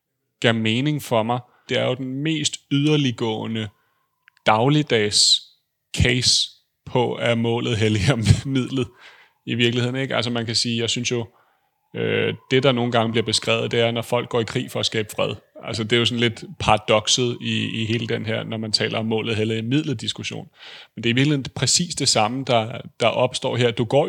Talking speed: 195 wpm